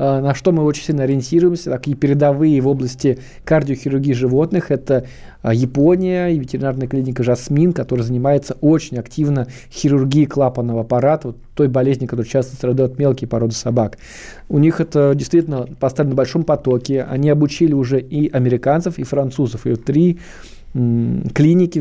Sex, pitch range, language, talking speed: male, 125-150 Hz, Russian, 150 wpm